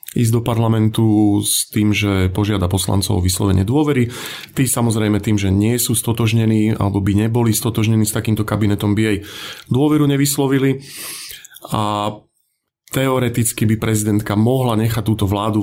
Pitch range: 100-115 Hz